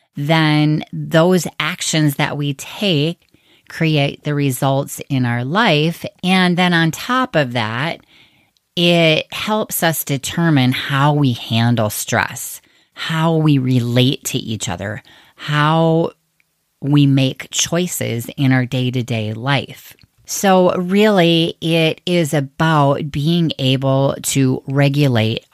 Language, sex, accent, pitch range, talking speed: English, female, American, 130-165 Hz, 115 wpm